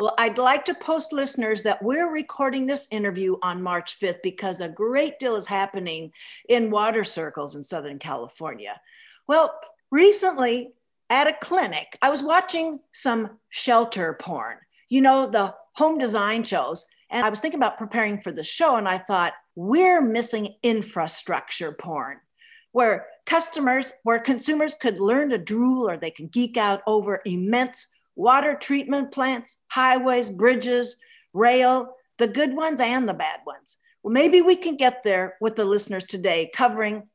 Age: 50-69